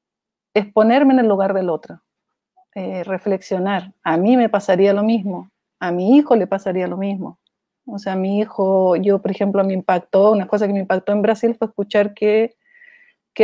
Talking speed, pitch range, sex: 190 wpm, 190-225 Hz, female